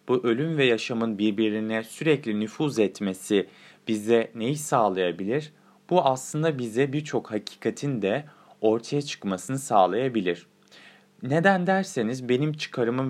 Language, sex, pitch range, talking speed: Turkish, male, 105-145 Hz, 110 wpm